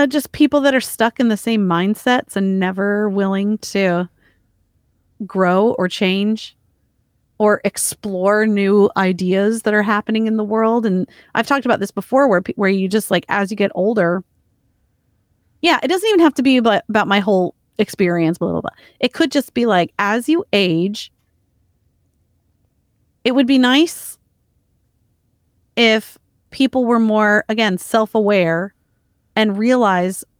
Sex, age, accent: female, 30-49, American